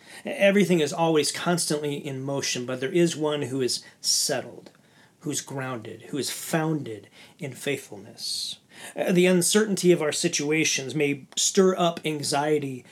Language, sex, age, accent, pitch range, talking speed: English, male, 40-59, American, 140-170 Hz, 140 wpm